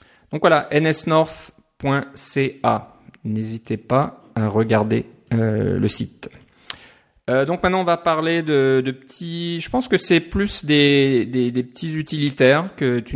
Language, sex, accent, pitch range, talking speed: French, male, French, 110-145 Hz, 140 wpm